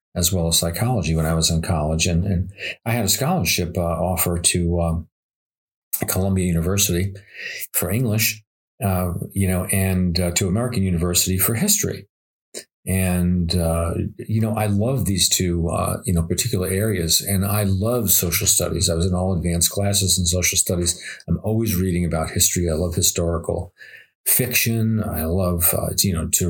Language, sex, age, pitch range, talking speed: English, male, 40-59, 90-105 Hz, 170 wpm